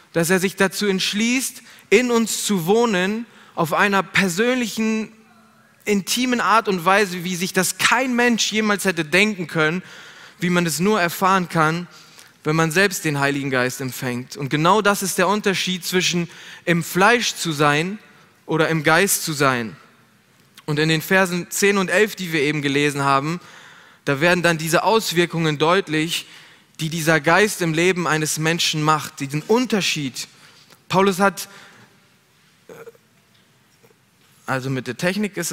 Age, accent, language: 20-39, German, German